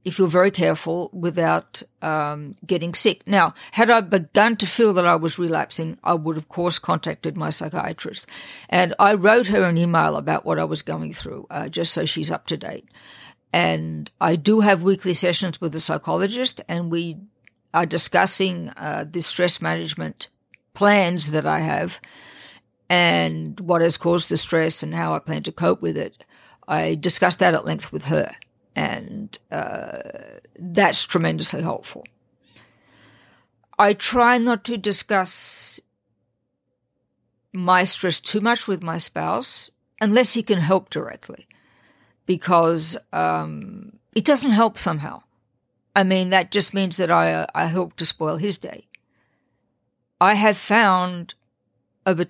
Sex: female